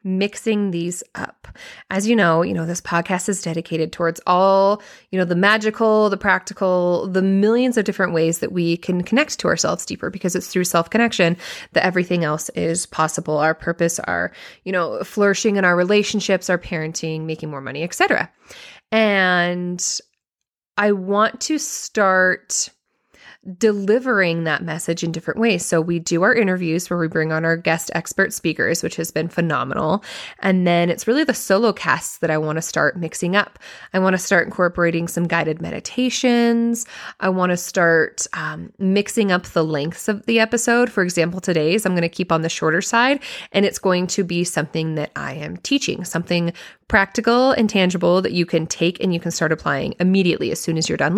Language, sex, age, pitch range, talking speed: English, female, 20-39, 170-210 Hz, 185 wpm